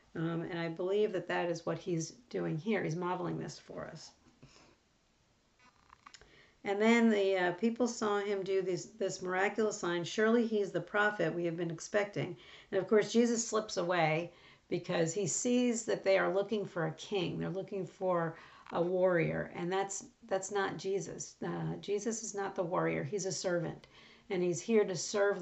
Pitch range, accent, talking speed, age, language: 175-215 Hz, American, 180 wpm, 50-69, English